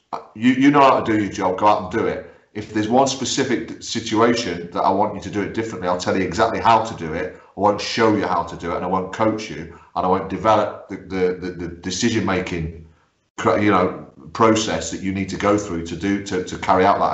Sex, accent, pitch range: male, British, 90-110 Hz